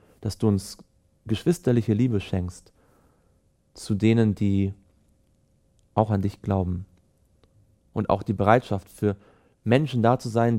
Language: German